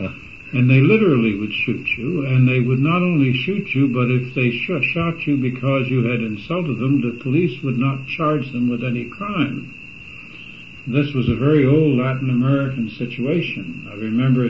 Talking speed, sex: 180 wpm, male